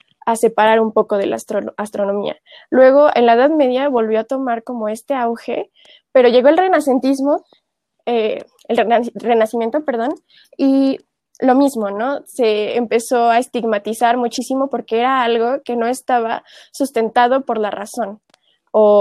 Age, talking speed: 20-39, 150 wpm